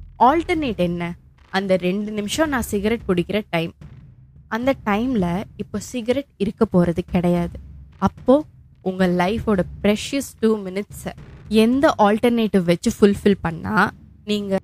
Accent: native